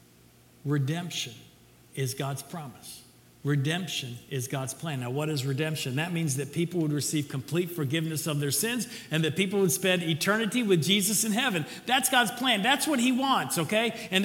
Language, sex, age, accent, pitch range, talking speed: English, male, 50-69, American, 155-230 Hz, 175 wpm